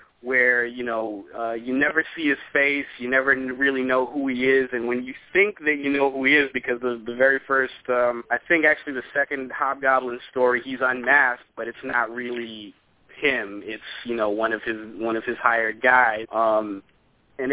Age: 30-49